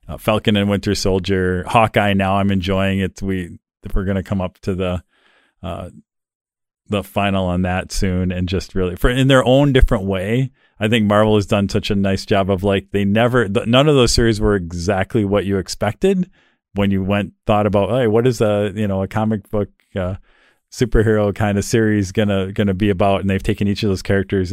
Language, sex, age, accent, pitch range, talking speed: English, male, 40-59, American, 95-105 Hz, 210 wpm